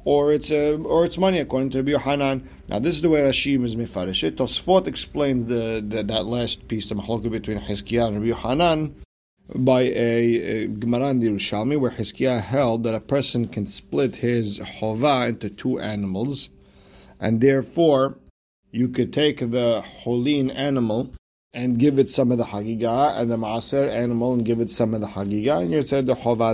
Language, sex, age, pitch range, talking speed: English, male, 50-69, 105-130 Hz, 185 wpm